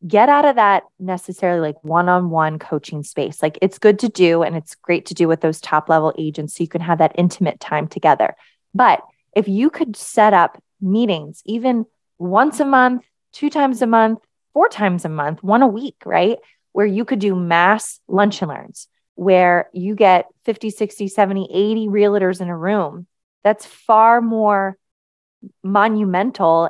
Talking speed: 180 wpm